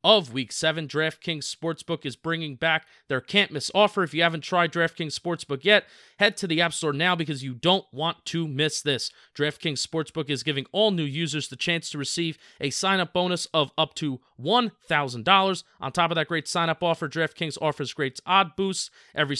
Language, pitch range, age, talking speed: English, 145-180 Hz, 30-49, 195 wpm